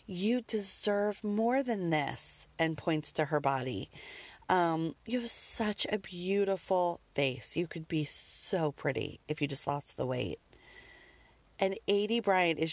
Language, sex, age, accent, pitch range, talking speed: English, female, 30-49, American, 155-205 Hz, 150 wpm